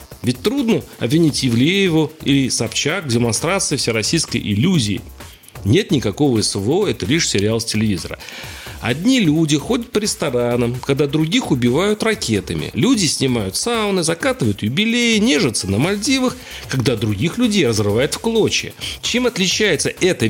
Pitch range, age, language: 115-180 Hz, 40-59, Russian